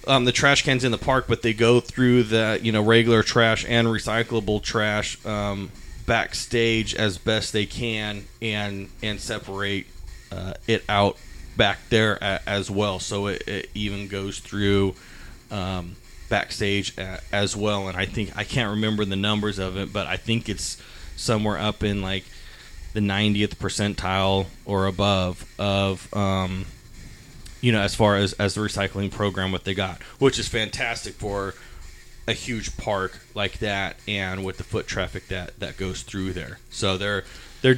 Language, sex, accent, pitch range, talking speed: English, male, American, 95-110 Hz, 170 wpm